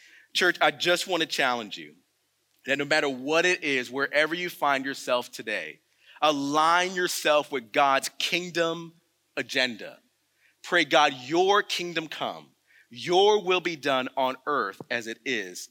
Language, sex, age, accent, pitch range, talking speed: English, male, 30-49, American, 135-170 Hz, 145 wpm